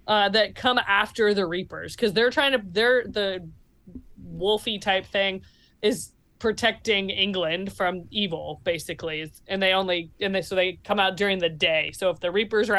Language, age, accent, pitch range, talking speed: English, 20-39, American, 185-220 Hz, 180 wpm